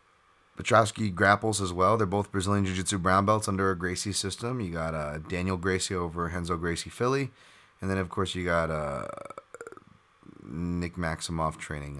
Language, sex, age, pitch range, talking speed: English, male, 30-49, 85-105 Hz, 165 wpm